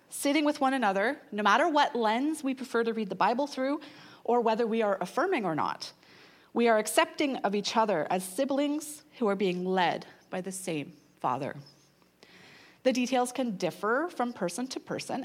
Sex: female